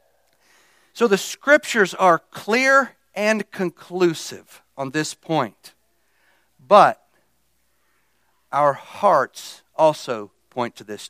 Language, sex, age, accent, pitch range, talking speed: English, male, 50-69, American, 125-180 Hz, 90 wpm